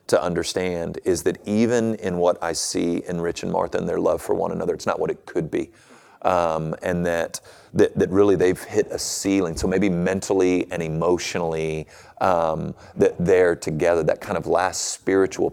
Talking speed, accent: 190 wpm, American